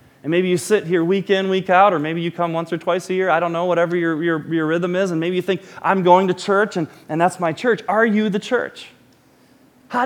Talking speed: 270 wpm